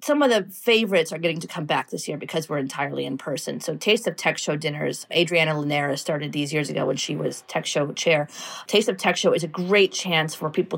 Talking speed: 245 wpm